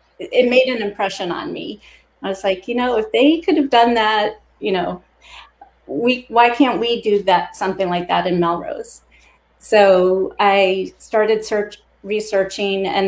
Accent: American